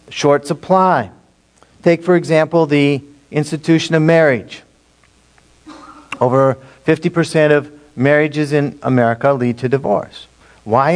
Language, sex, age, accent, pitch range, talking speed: English, male, 50-69, American, 130-165 Hz, 105 wpm